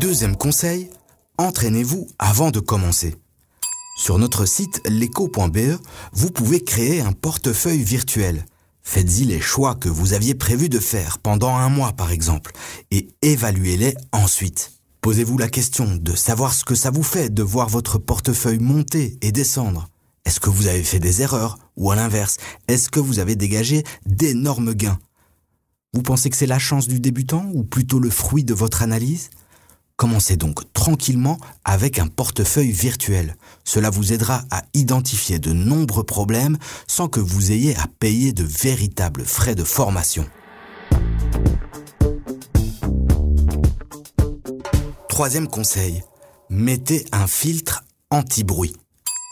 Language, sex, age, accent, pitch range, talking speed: French, male, 30-49, French, 95-140 Hz, 140 wpm